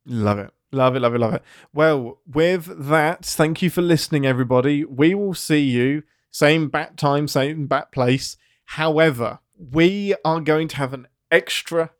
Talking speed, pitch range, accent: 170 wpm, 120-150 Hz, British